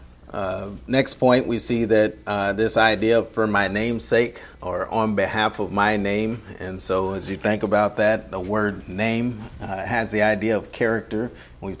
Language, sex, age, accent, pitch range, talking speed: English, male, 30-49, American, 100-115 Hz, 180 wpm